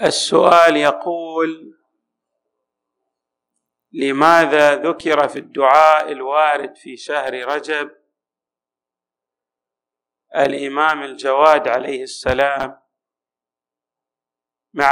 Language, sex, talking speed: Arabic, male, 60 wpm